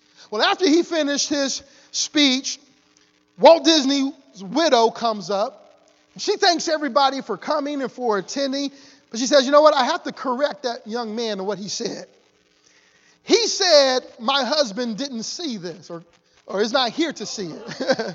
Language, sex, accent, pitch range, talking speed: English, male, American, 250-360 Hz, 170 wpm